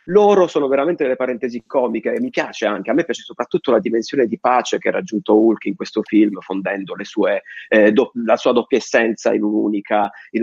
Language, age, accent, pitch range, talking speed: Italian, 30-49, native, 110-155 Hz, 215 wpm